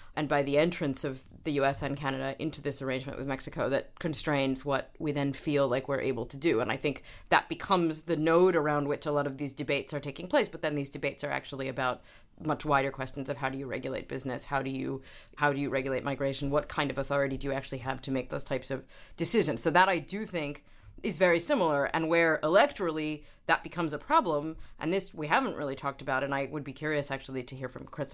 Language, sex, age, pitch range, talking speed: English, female, 30-49, 135-165 Hz, 240 wpm